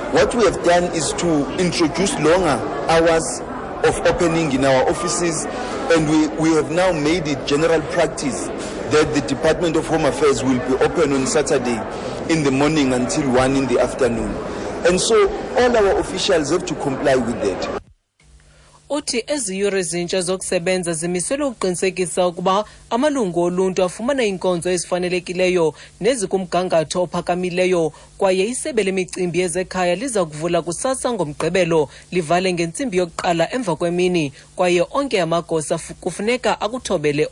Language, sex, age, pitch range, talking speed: English, male, 40-59, 165-185 Hz, 140 wpm